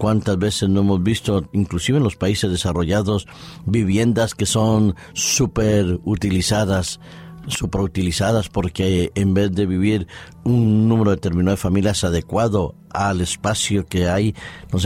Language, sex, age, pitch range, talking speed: Spanish, male, 50-69, 90-105 Hz, 135 wpm